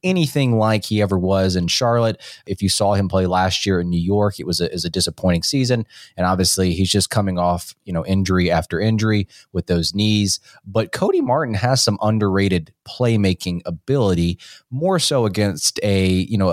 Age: 20-39